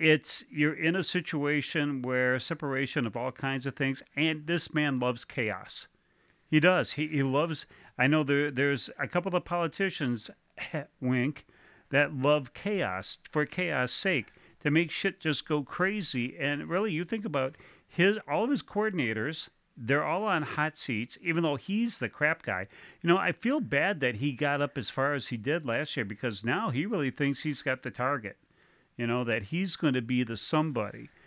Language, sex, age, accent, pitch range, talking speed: English, male, 40-59, American, 125-160 Hz, 190 wpm